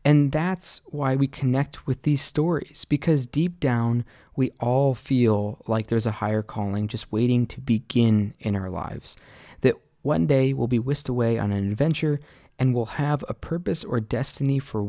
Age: 20-39